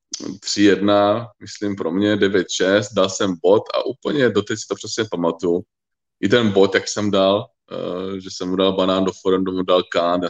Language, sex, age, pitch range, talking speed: Czech, male, 20-39, 90-100 Hz, 190 wpm